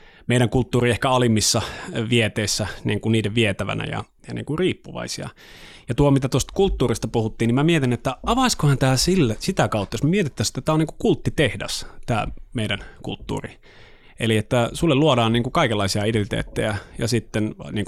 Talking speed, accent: 170 wpm, native